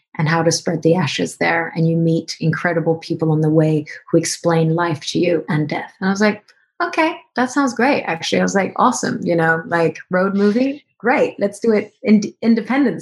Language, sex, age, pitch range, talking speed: English, female, 30-49, 165-225 Hz, 210 wpm